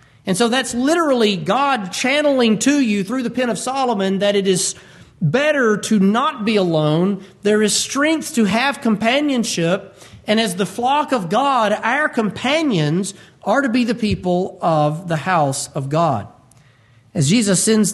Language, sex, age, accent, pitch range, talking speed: English, male, 40-59, American, 170-235 Hz, 160 wpm